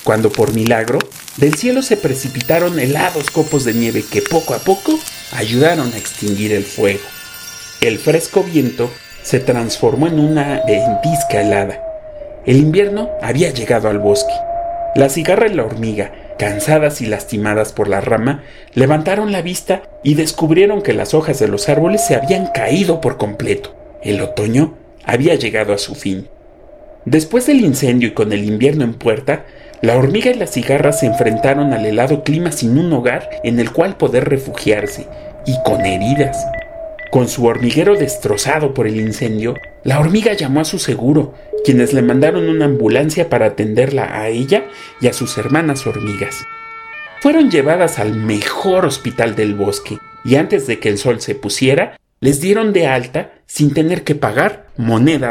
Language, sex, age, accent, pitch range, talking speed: Spanish, male, 40-59, Mexican, 115-185 Hz, 165 wpm